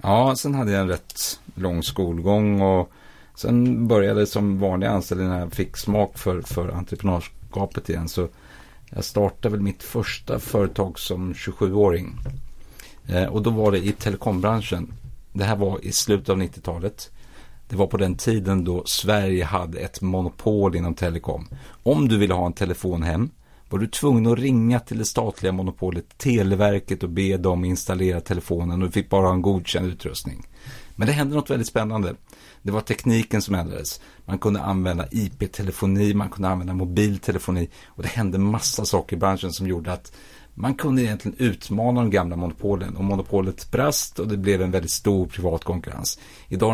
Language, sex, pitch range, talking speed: Swedish, male, 90-105 Hz, 170 wpm